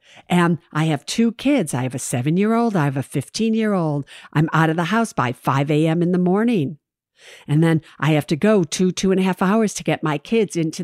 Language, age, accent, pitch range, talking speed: English, 60-79, American, 155-215 Hz, 225 wpm